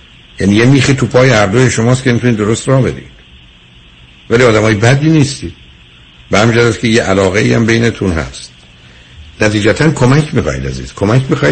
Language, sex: Persian, male